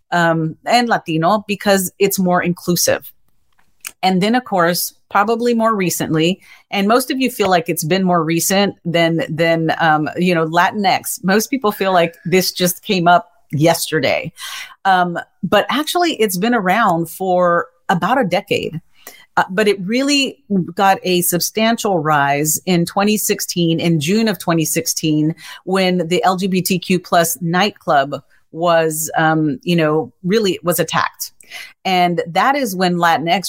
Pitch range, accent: 170-205 Hz, American